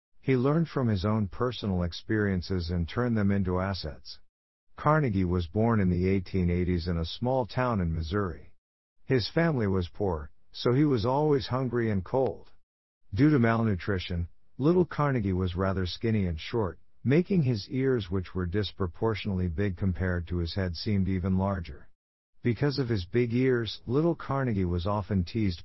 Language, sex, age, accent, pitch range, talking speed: English, male, 50-69, American, 85-120 Hz, 160 wpm